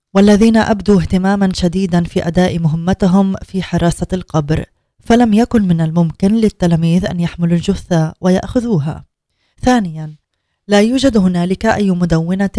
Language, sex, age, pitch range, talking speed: Arabic, female, 20-39, 170-200 Hz, 120 wpm